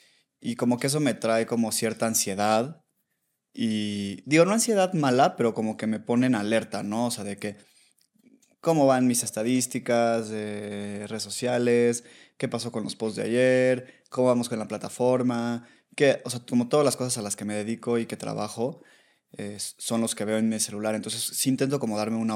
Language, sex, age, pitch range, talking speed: Spanish, male, 20-39, 105-125 Hz, 195 wpm